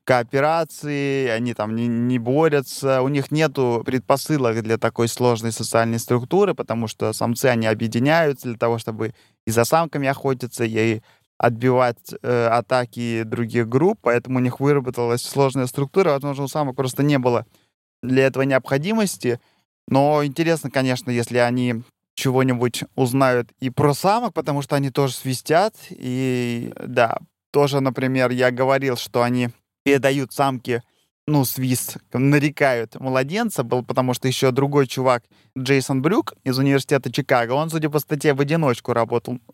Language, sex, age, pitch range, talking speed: Russian, male, 20-39, 120-140 Hz, 145 wpm